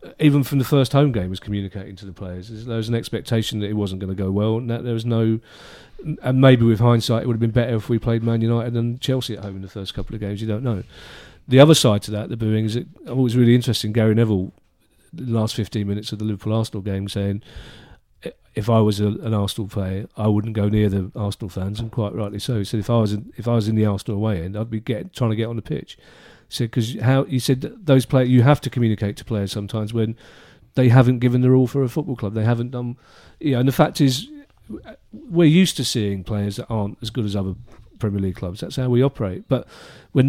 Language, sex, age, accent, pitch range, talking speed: English, male, 40-59, British, 105-130 Hz, 260 wpm